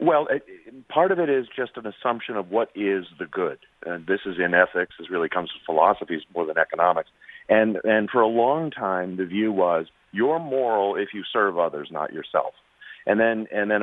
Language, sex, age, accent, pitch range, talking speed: English, male, 40-59, American, 85-105 Hz, 205 wpm